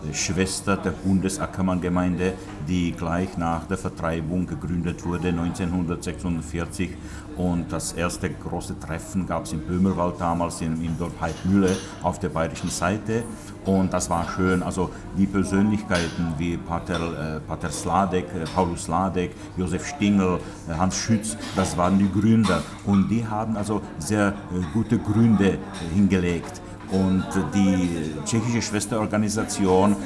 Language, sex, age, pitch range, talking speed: Czech, male, 60-79, 90-105 Hz, 135 wpm